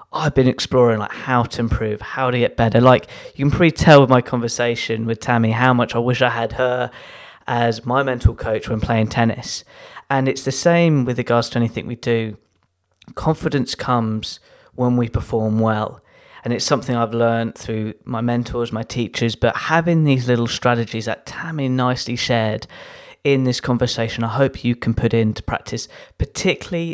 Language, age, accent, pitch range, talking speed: English, 20-39, British, 115-130 Hz, 180 wpm